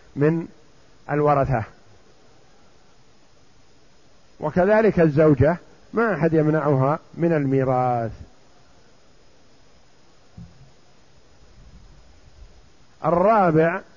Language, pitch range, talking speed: Arabic, 145-190 Hz, 45 wpm